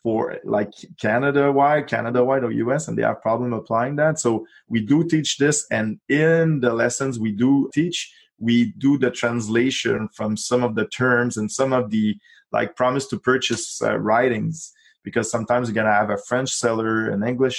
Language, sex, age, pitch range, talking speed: English, male, 20-39, 115-140 Hz, 190 wpm